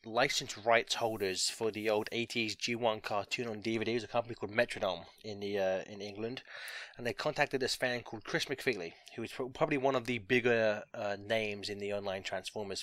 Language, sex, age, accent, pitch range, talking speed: English, male, 20-39, British, 110-130 Hz, 190 wpm